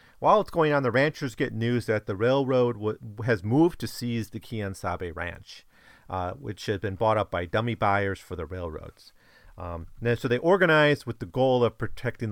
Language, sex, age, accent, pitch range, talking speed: English, male, 40-59, American, 95-125 Hz, 205 wpm